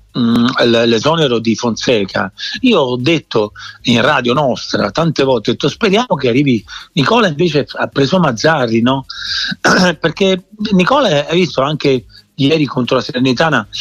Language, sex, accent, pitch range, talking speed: Italian, male, native, 130-185 Hz, 130 wpm